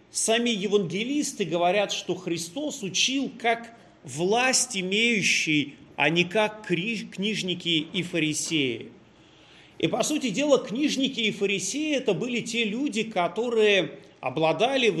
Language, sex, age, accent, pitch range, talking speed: Russian, male, 40-59, native, 170-235 Hz, 115 wpm